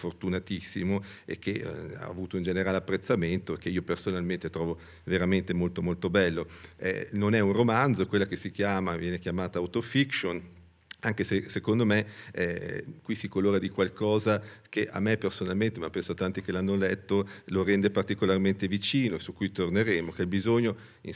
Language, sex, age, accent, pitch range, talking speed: Italian, male, 40-59, native, 95-115 Hz, 175 wpm